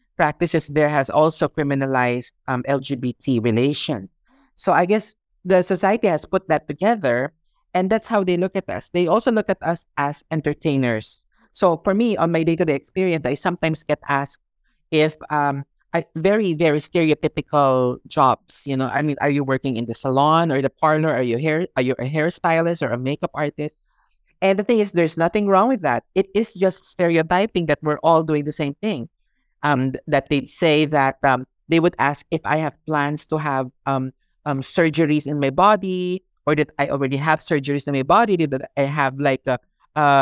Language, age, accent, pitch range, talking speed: English, 20-39, Filipino, 135-170 Hz, 190 wpm